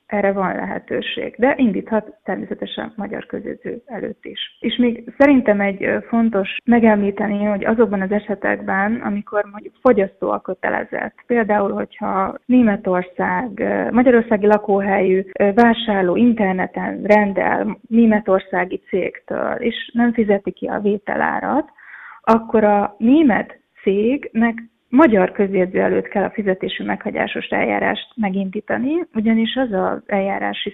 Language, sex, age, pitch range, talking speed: Hungarian, female, 20-39, 195-235 Hz, 115 wpm